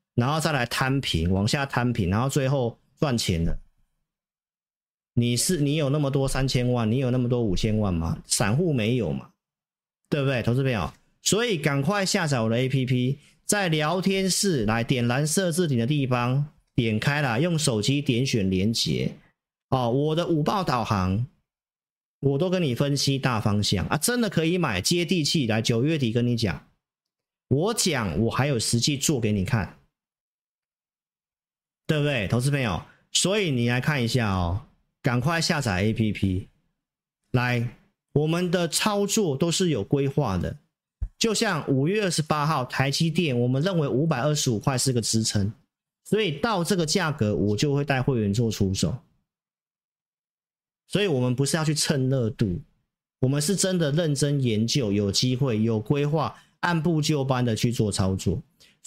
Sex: male